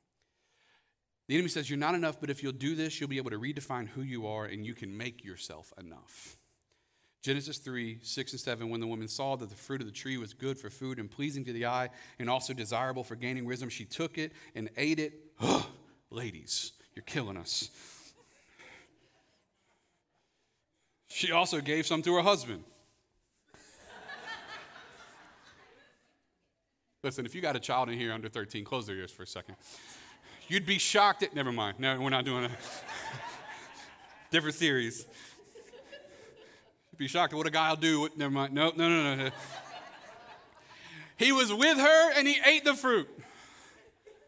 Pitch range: 120-180 Hz